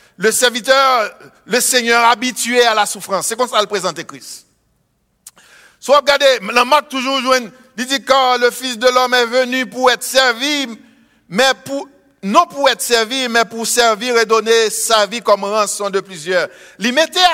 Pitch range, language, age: 220-275 Hz, English, 60-79